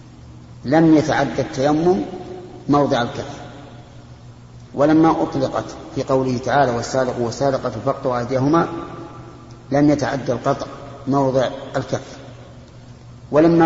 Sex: male